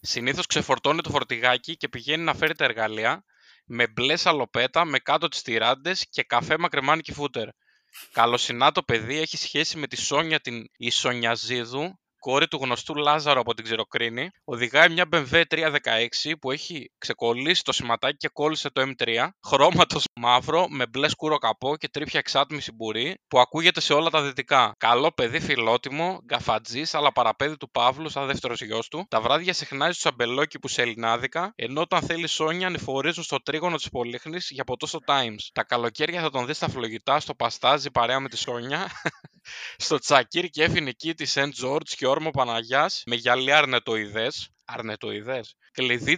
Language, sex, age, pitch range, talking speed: Greek, male, 20-39, 125-155 Hz, 165 wpm